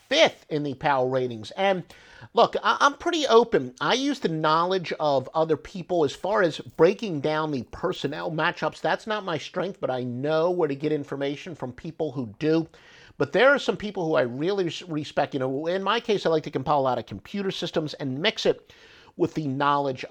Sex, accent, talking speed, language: male, American, 205 wpm, English